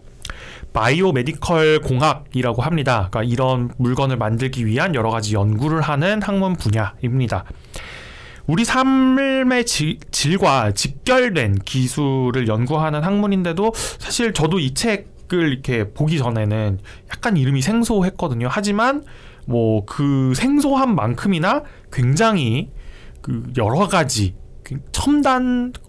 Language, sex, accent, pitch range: Korean, male, native, 115-185 Hz